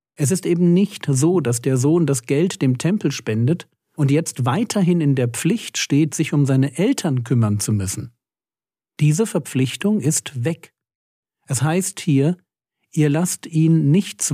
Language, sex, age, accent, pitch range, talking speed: German, male, 50-69, German, 125-165 Hz, 160 wpm